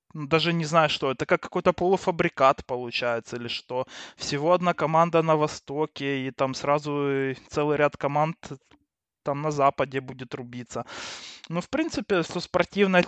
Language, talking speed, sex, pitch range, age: Russian, 145 wpm, male, 130-165 Hz, 20-39